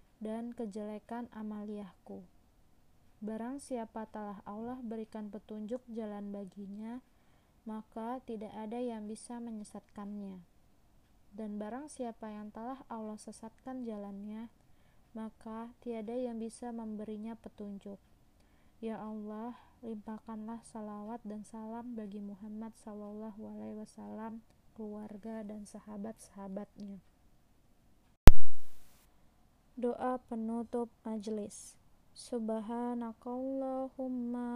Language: Malay